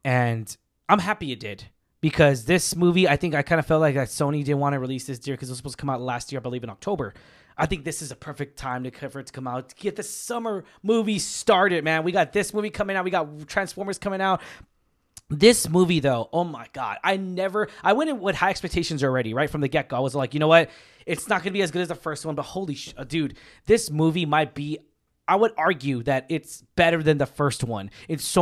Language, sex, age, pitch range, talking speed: English, male, 20-39, 145-195 Hz, 260 wpm